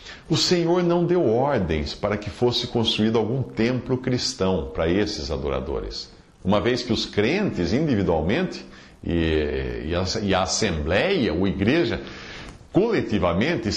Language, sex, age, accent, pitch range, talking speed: Portuguese, male, 50-69, Brazilian, 85-125 Hz, 120 wpm